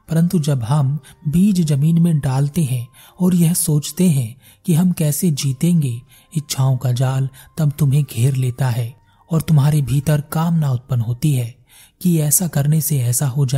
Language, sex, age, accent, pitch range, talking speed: Hindi, male, 30-49, native, 130-160 Hz, 75 wpm